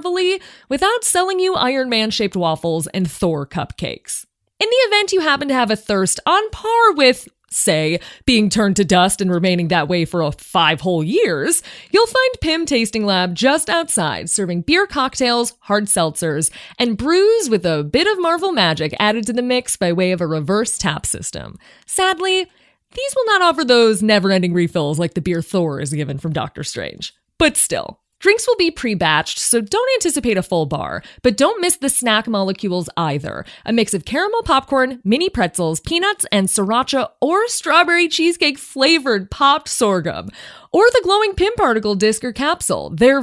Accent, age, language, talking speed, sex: American, 30-49, English, 175 wpm, female